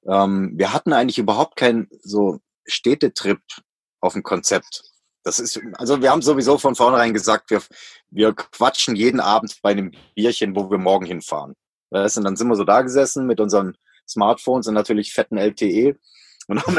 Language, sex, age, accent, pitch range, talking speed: German, male, 30-49, German, 95-115 Hz, 170 wpm